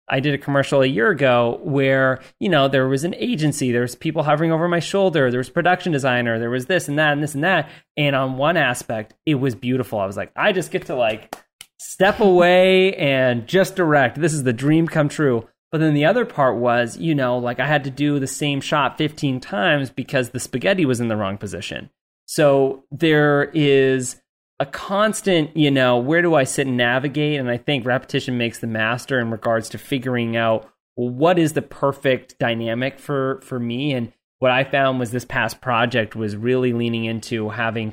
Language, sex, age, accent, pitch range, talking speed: English, male, 30-49, American, 120-145 Hz, 210 wpm